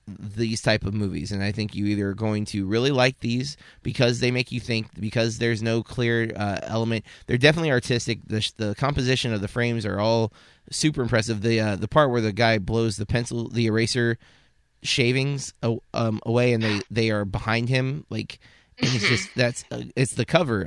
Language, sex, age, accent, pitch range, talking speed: English, male, 30-49, American, 105-125 Hz, 205 wpm